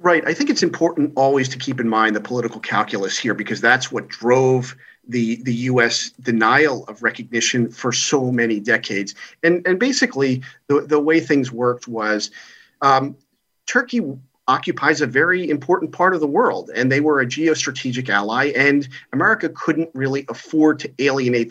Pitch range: 120-145 Hz